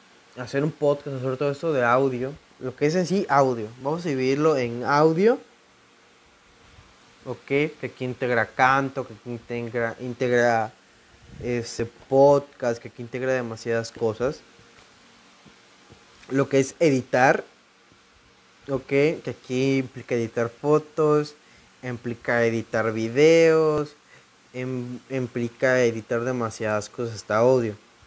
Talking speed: 120 wpm